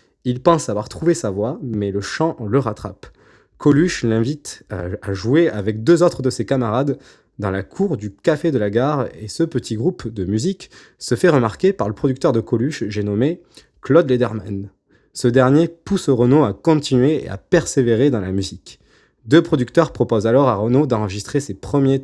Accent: French